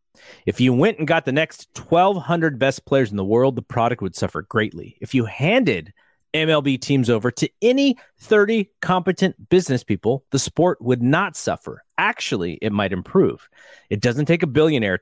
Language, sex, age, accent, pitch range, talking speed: English, male, 30-49, American, 110-160 Hz, 175 wpm